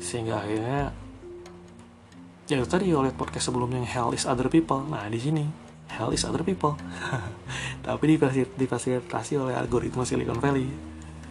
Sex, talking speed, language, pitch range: male, 145 wpm, Indonesian, 105-135 Hz